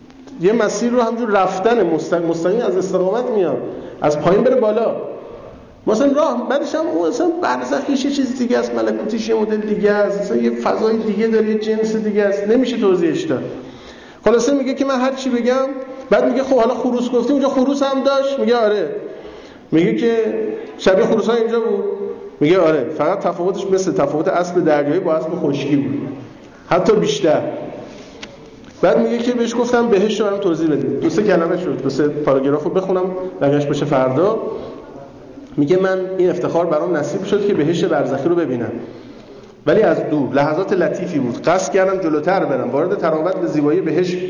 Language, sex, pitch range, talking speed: Persian, male, 170-235 Hz, 170 wpm